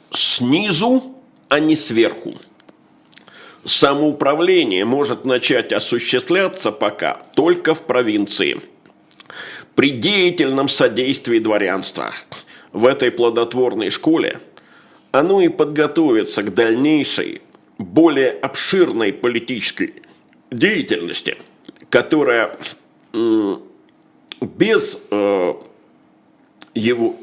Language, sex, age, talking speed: Russian, male, 50-69, 70 wpm